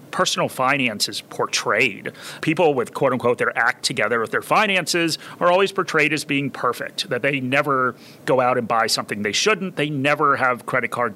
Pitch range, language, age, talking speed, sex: 125-160 Hz, English, 30-49, 185 wpm, male